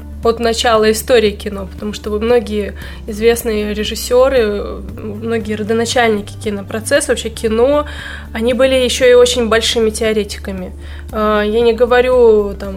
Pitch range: 210-255 Hz